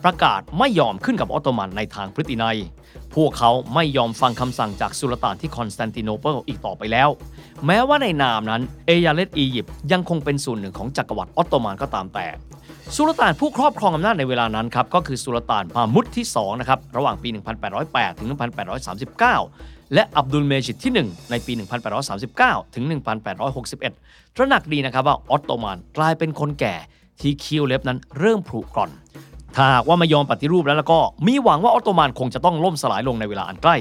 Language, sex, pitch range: Thai, male, 120-170 Hz